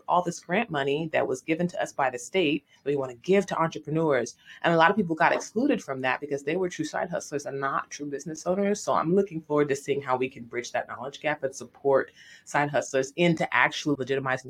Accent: American